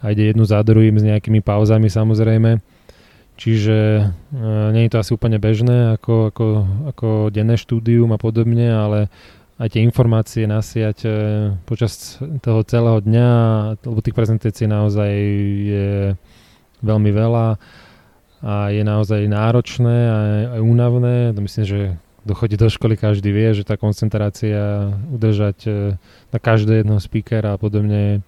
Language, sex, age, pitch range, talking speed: Slovak, male, 20-39, 105-115 Hz, 140 wpm